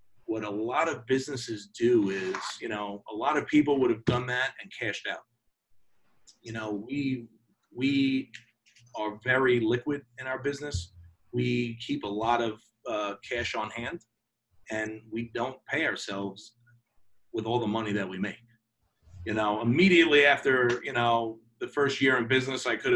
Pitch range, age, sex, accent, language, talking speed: 110-130 Hz, 30-49, male, American, English, 165 wpm